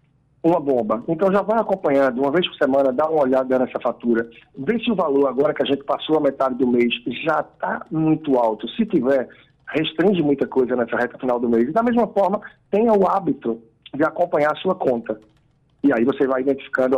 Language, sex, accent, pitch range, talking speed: Portuguese, male, Brazilian, 130-160 Hz, 205 wpm